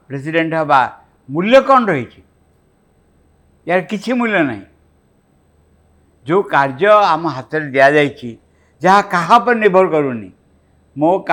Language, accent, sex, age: English, Indian, male, 60-79